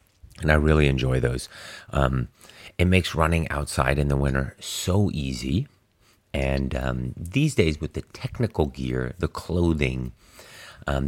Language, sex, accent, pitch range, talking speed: English, male, American, 65-90 Hz, 140 wpm